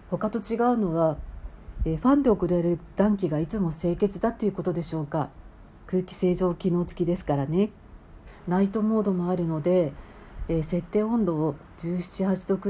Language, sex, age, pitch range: Japanese, female, 50-69, 160-205 Hz